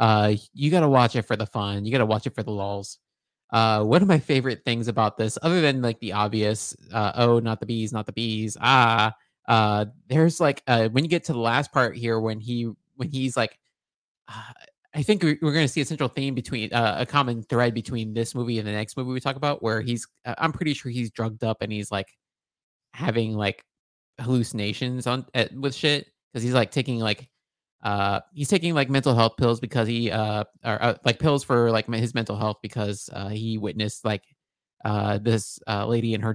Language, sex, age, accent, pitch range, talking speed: English, male, 20-39, American, 105-130 Hz, 220 wpm